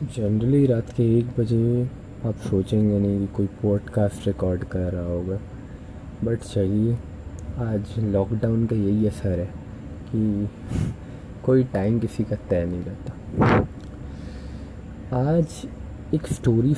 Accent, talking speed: native, 120 wpm